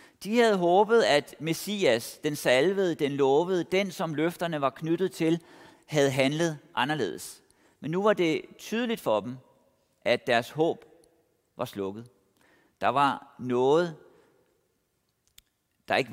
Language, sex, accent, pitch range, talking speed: Danish, male, native, 135-190 Hz, 130 wpm